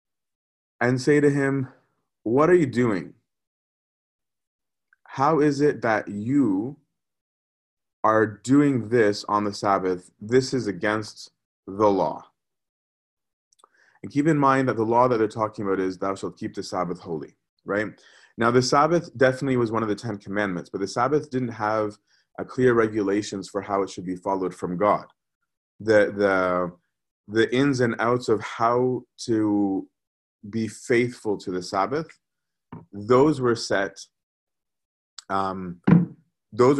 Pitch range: 95-120 Hz